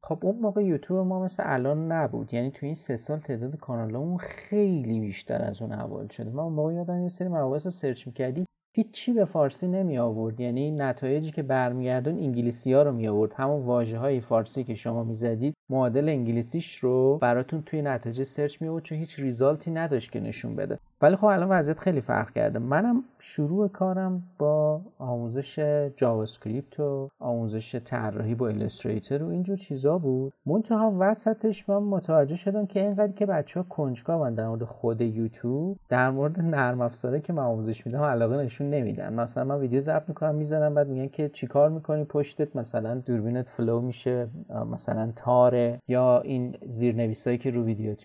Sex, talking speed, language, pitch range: male, 180 wpm, Persian, 120-165 Hz